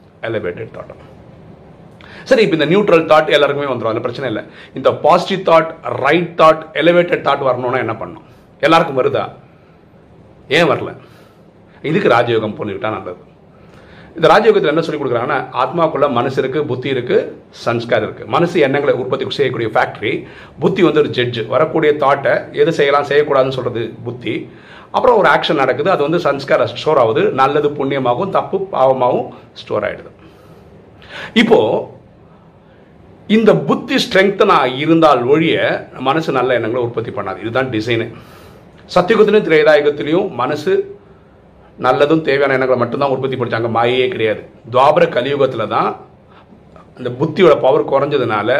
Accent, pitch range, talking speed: native, 125-185 Hz, 60 wpm